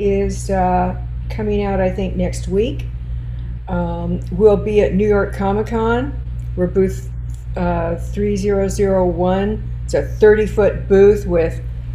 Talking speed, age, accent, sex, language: 125 wpm, 50-69, American, female, English